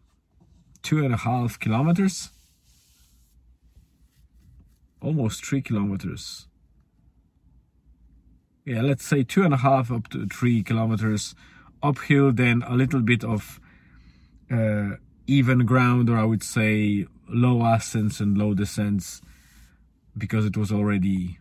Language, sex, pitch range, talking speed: English, male, 85-120 Hz, 115 wpm